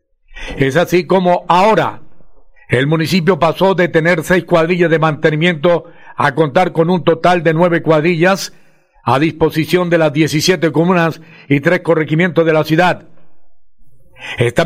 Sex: male